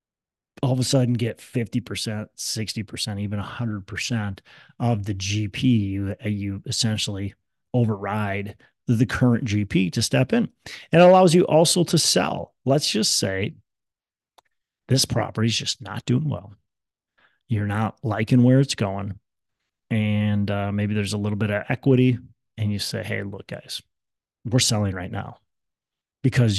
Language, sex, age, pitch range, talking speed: English, male, 30-49, 105-130 Hz, 145 wpm